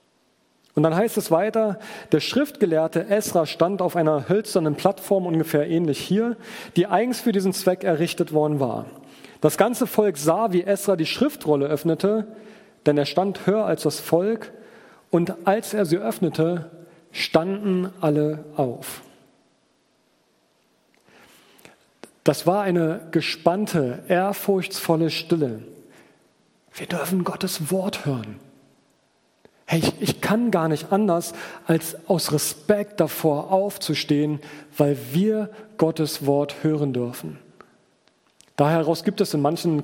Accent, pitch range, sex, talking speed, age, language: German, 150-195 Hz, male, 125 wpm, 40-59, German